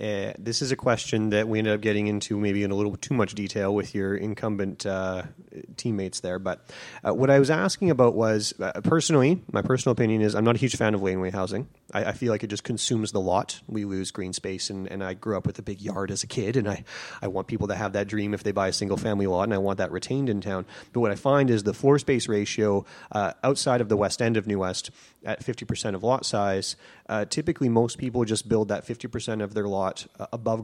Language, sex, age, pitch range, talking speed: English, male, 30-49, 100-125 Hz, 250 wpm